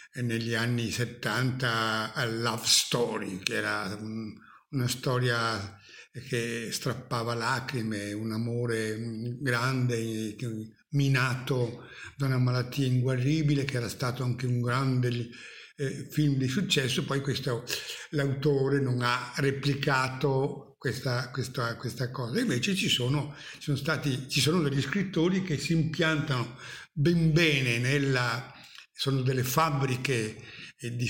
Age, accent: 60-79, native